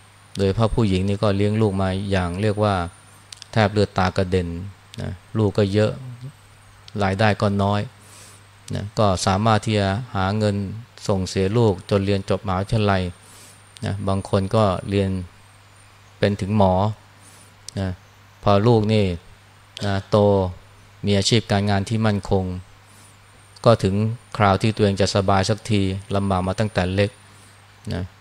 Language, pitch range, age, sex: English, 95-105 Hz, 20-39, male